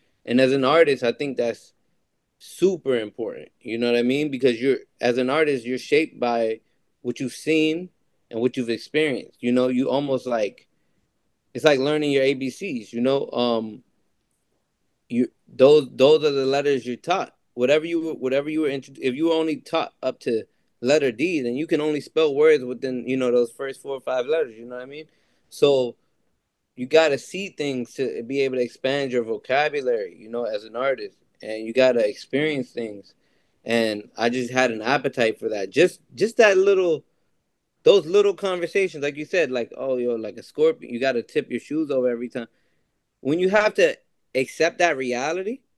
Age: 20-39